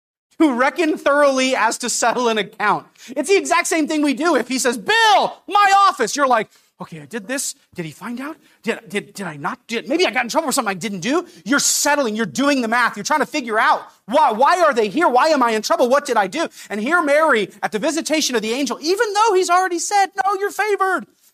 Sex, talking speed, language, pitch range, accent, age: male, 245 wpm, English, 215-320 Hz, American, 30-49